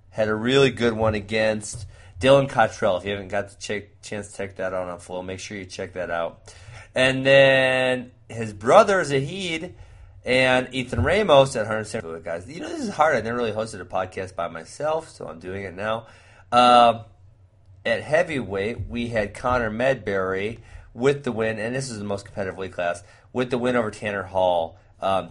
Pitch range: 100-125 Hz